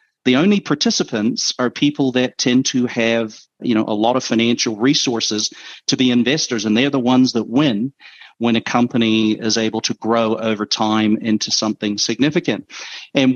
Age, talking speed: 40-59, 170 wpm